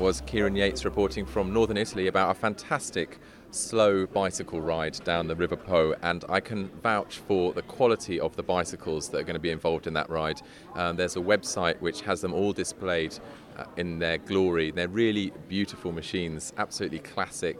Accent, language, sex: British, English, male